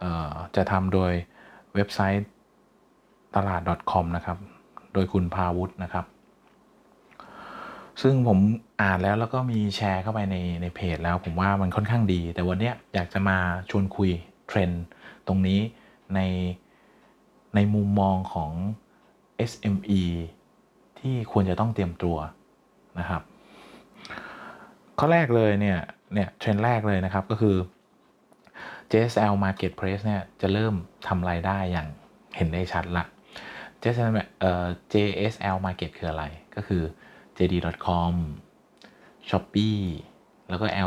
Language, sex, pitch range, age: Thai, male, 90-105 Hz, 20-39